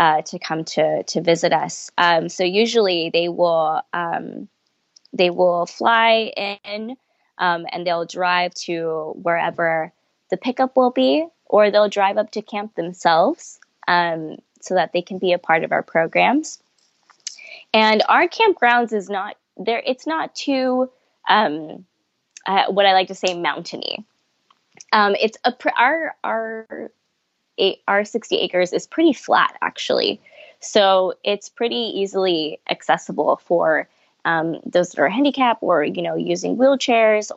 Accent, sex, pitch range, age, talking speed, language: American, female, 175-225 Hz, 10-29, 145 wpm, English